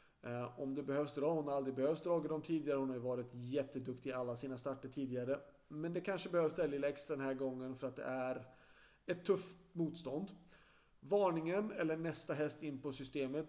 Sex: male